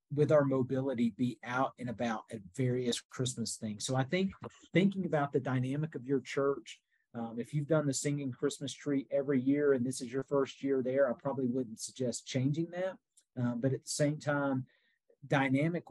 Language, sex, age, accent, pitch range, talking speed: English, male, 40-59, American, 125-145 Hz, 190 wpm